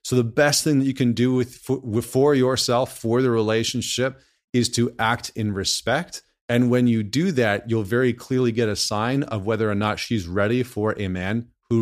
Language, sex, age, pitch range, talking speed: English, male, 30-49, 105-125 Hz, 210 wpm